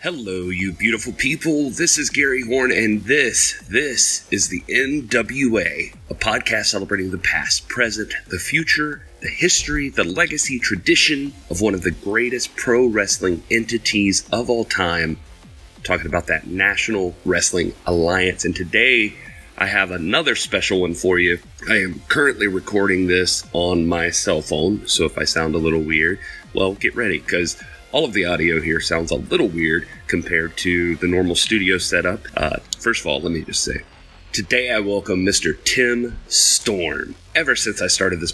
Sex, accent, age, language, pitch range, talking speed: male, American, 30-49, English, 85-110 Hz, 165 wpm